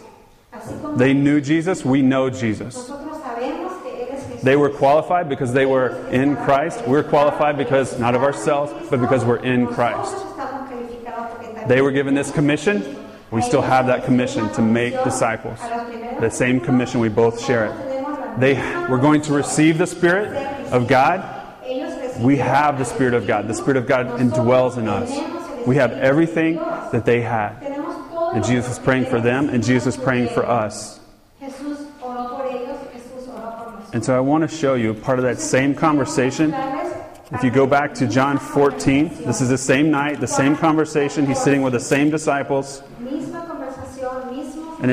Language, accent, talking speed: English, American, 160 wpm